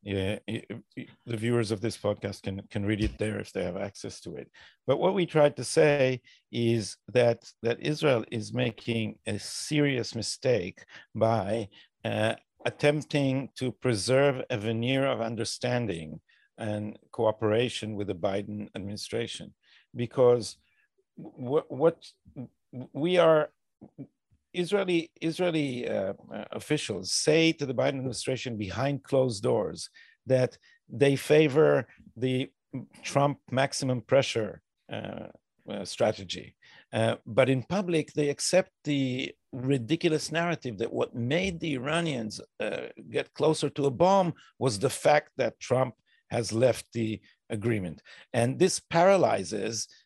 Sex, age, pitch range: male, 50-69, 115-150 Hz